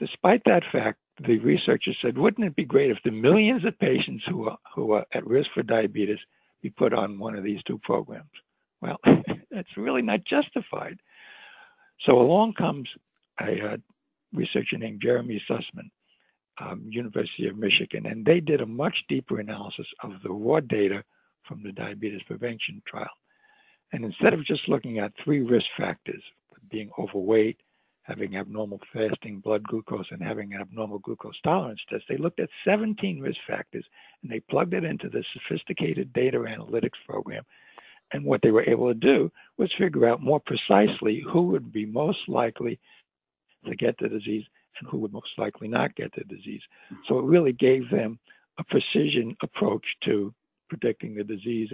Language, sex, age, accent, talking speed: English, male, 60-79, American, 170 wpm